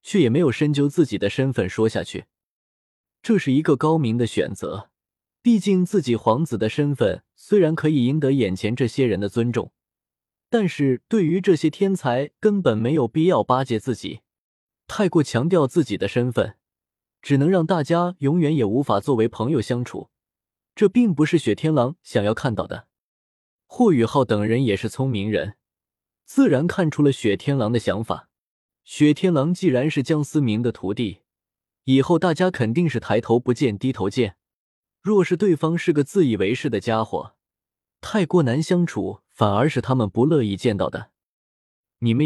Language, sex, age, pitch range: Chinese, male, 20-39, 110-165 Hz